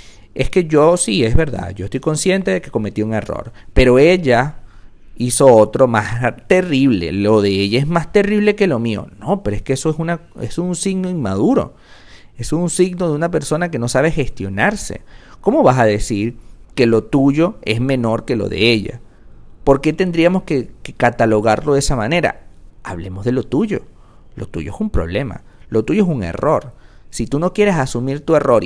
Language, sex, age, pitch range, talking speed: Spanish, male, 50-69, 100-150 Hz, 195 wpm